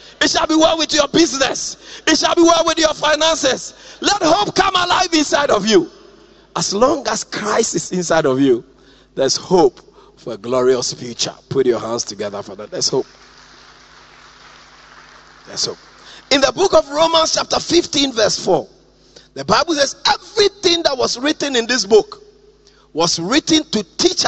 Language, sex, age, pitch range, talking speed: English, male, 40-59, 215-345 Hz, 170 wpm